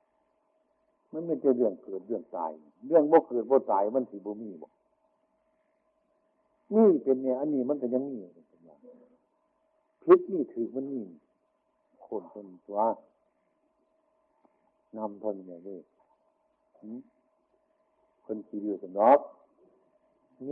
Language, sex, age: Chinese, male, 60-79